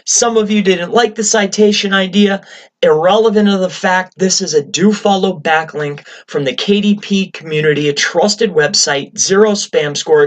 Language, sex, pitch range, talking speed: English, male, 170-215 Hz, 160 wpm